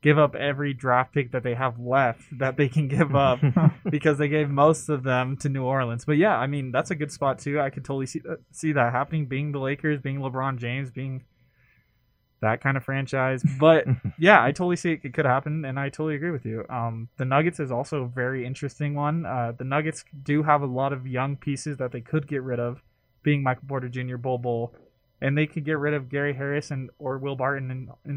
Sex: male